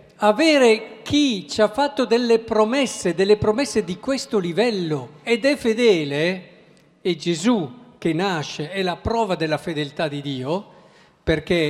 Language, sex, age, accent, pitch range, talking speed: Italian, male, 50-69, native, 155-215 Hz, 140 wpm